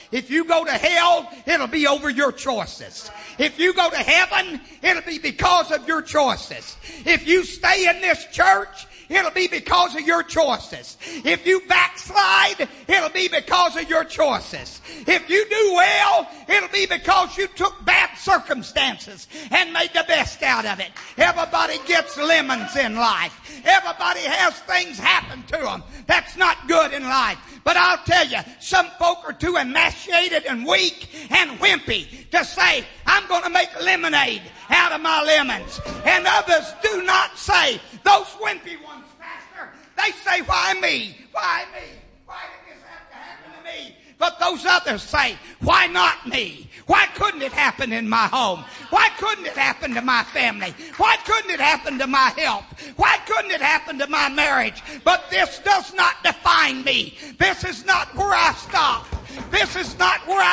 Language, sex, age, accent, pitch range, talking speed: English, male, 50-69, American, 310-375 Hz, 165 wpm